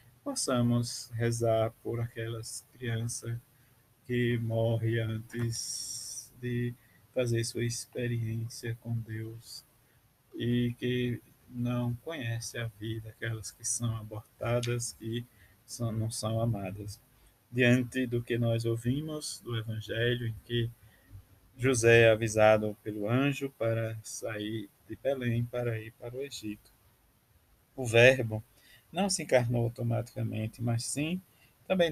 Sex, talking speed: male, 115 wpm